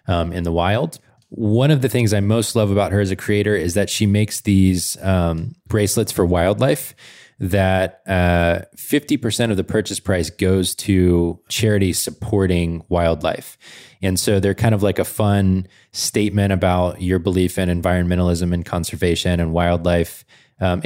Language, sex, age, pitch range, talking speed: English, male, 20-39, 95-120 Hz, 160 wpm